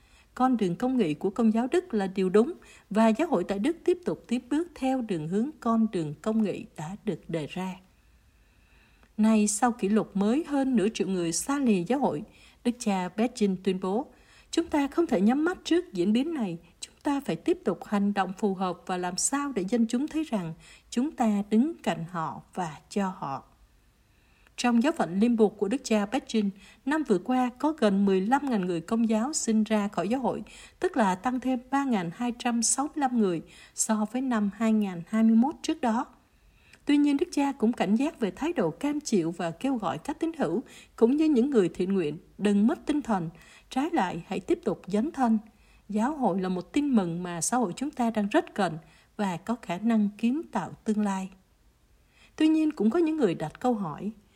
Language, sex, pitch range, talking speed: Vietnamese, female, 195-260 Hz, 205 wpm